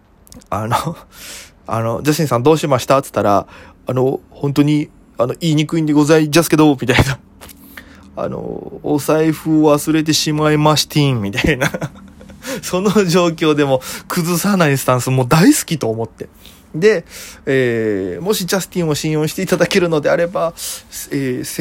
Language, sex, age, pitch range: Japanese, male, 20-39, 120-170 Hz